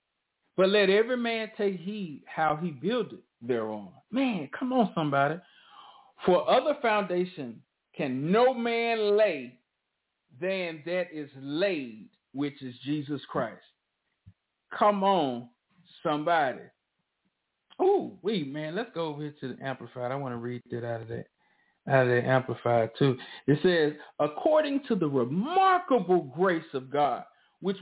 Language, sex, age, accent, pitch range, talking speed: English, male, 50-69, American, 150-220 Hz, 140 wpm